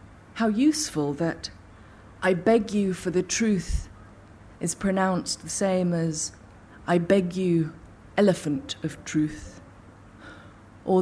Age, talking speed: 30-49, 115 wpm